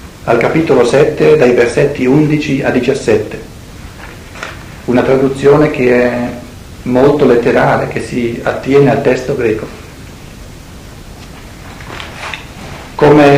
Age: 50-69